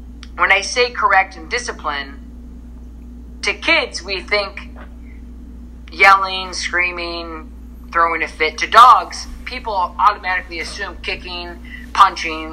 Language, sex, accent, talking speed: English, male, American, 105 wpm